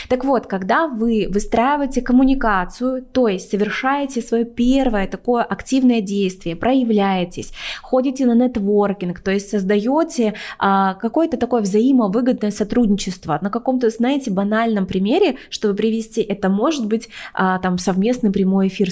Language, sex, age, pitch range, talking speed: Russian, female, 20-39, 195-240 Hz, 130 wpm